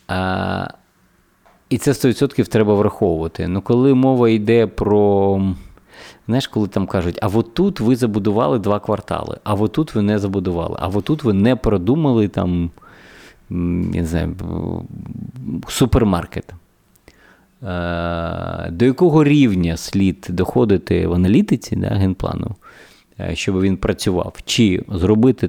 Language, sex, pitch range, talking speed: Ukrainian, male, 90-110 Hz, 120 wpm